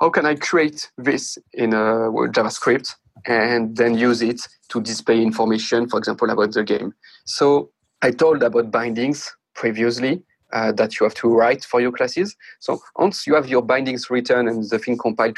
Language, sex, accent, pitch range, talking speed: English, male, French, 115-145 Hz, 185 wpm